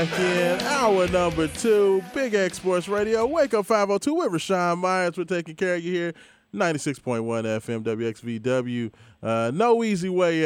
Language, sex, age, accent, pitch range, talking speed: English, male, 20-39, American, 135-170 Hz, 160 wpm